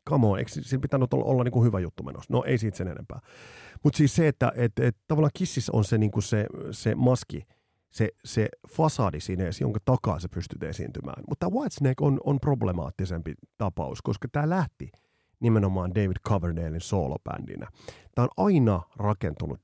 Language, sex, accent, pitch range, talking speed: Finnish, male, native, 95-130 Hz, 175 wpm